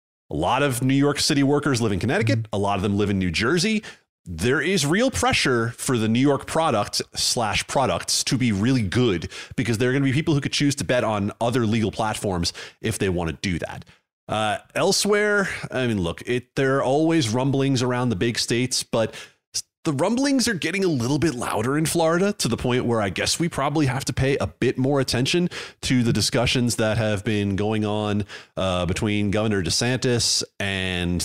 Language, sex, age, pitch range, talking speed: English, male, 30-49, 90-130 Hz, 205 wpm